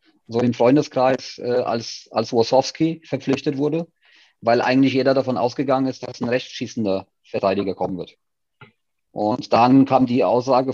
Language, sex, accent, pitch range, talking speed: German, male, German, 120-140 Hz, 145 wpm